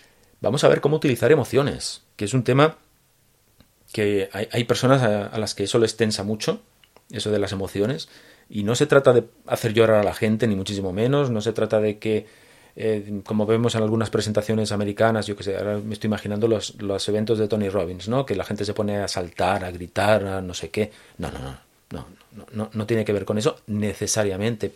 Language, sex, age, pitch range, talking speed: Spanish, male, 30-49, 105-120 Hz, 220 wpm